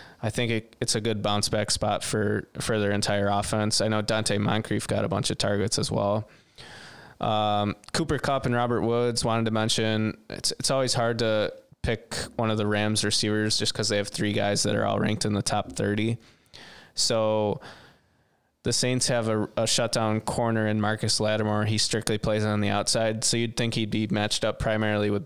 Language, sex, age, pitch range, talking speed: English, male, 20-39, 105-115 Hz, 200 wpm